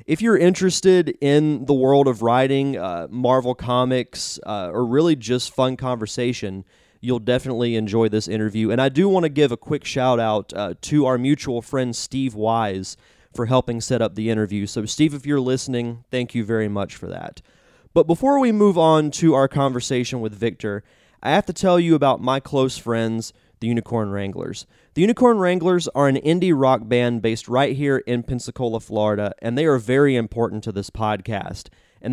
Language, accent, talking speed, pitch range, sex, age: English, American, 190 wpm, 115-140 Hz, male, 30-49